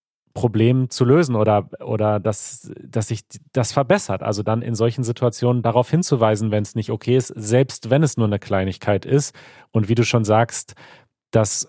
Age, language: 30-49, German